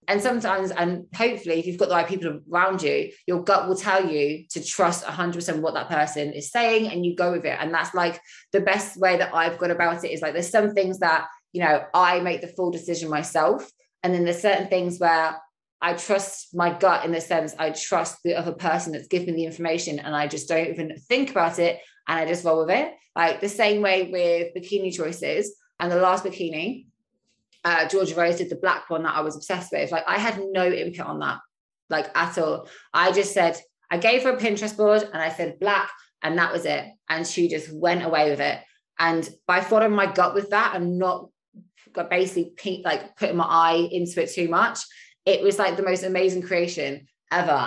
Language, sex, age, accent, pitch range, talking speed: English, female, 20-39, British, 165-195 Hz, 220 wpm